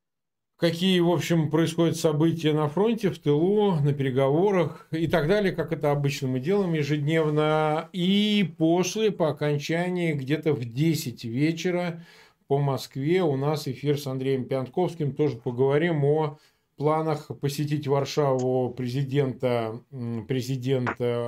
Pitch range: 140-180 Hz